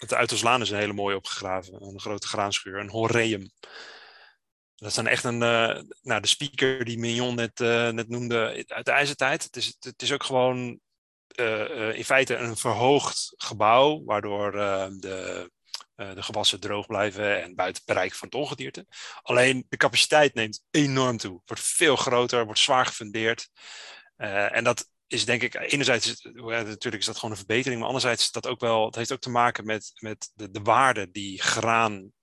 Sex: male